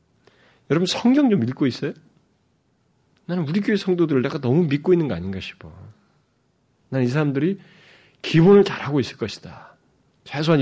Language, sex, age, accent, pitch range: Korean, male, 30-49, native, 100-150 Hz